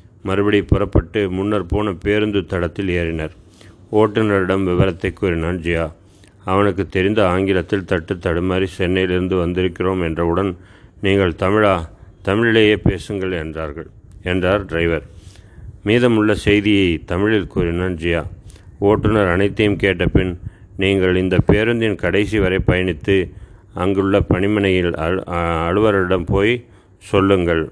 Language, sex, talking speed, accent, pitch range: Tamil, male, 95 wpm, native, 90-100 Hz